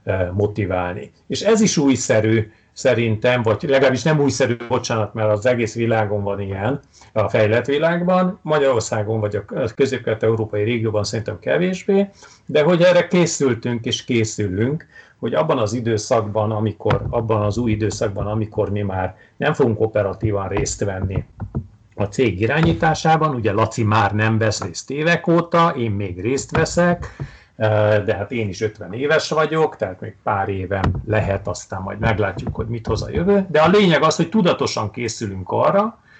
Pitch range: 105-135 Hz